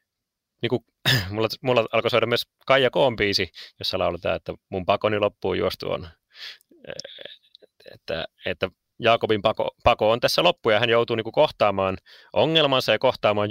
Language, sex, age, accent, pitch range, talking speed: Finnish, male, 30-49, native, 90-120 Hz, 140 wpm